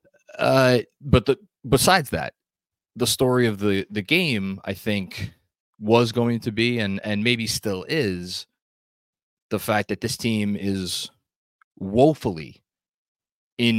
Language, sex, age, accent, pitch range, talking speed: English, male, 20-39, American, 95-120 Hz, 130 wpm